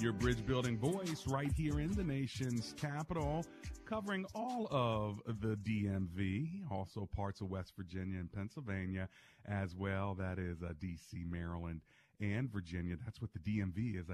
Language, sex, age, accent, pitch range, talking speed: English, male, 40-59, American, 85-105 Hz, 150 wpm